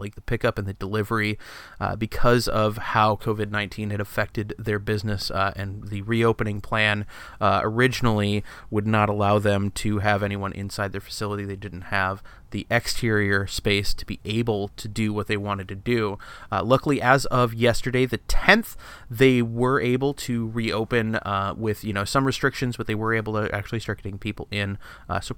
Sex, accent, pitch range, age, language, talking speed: male, American, 100-115 Hz, 30-49, English, 185 wpm